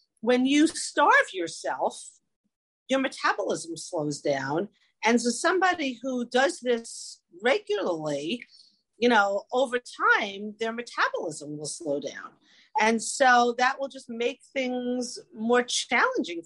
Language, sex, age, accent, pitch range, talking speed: English, female, 40-59, American, 200-265 Hz, 120 wpm